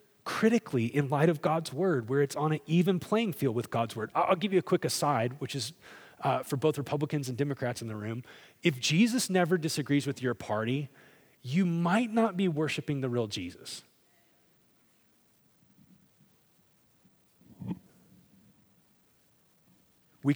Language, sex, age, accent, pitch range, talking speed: English, male, 30-49, American, 130-170 Hz, 145 wpm